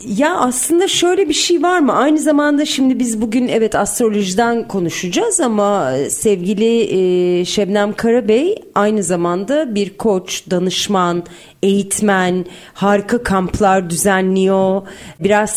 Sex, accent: female, native